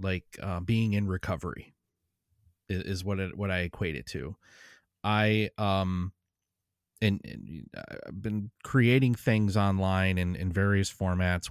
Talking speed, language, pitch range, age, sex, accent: 140 wpm, English, 90-105 Hz, 30-49, male, American